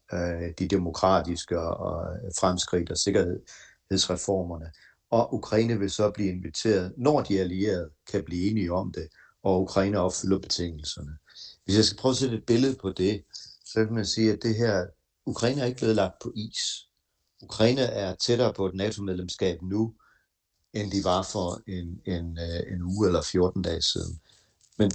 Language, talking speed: Danish, 165 wpm